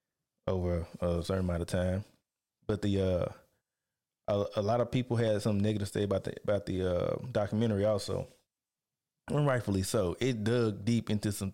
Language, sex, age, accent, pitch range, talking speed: English, male, 20-39, American, 105-125 Hz, 170 wpm